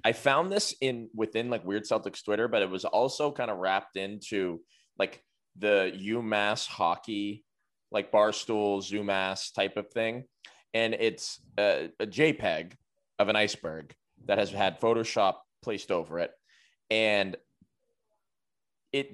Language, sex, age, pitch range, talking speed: English, male, 20-39, 100-125 Hz, 140 wpm